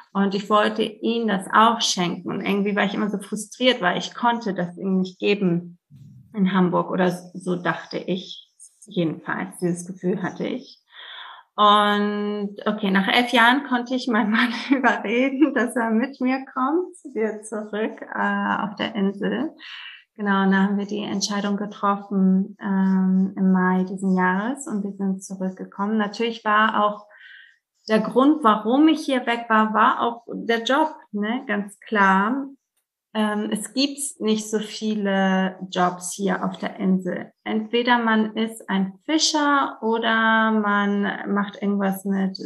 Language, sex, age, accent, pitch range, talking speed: German, female, 30-49, German, 195-230 Hz, 150 wpm